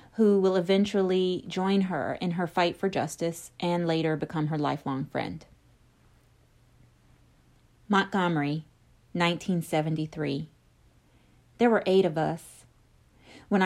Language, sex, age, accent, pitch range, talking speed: English, female, 40-59, American, 165-195 Hz, 105 wpm